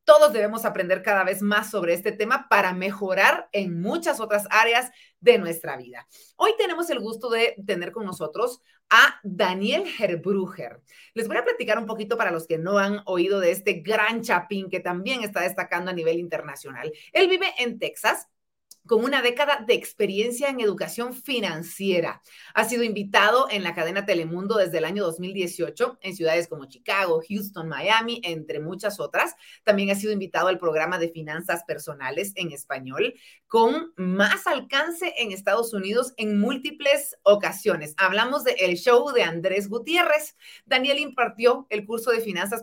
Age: 40-59